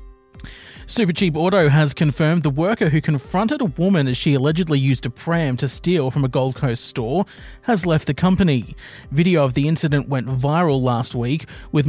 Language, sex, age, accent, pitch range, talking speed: English, male, 30-49, Australian, 135-175 Hz, 180 wpm